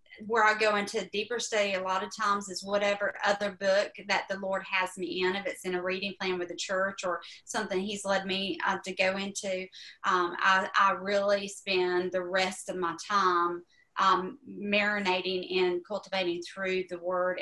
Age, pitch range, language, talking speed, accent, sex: 30-49, 185-220 Hz, English, 190 wpm, American, female